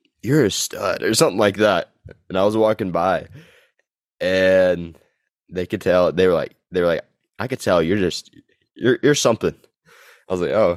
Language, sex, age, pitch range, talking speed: English, male, 20-39, 85-110 Hz, 190 wpm